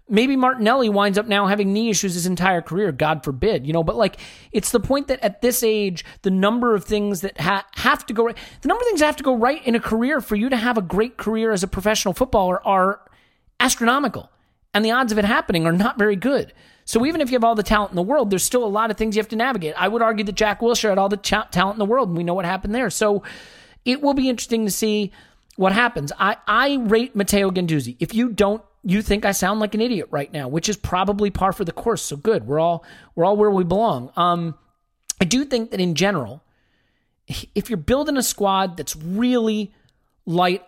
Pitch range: 170-230 Hz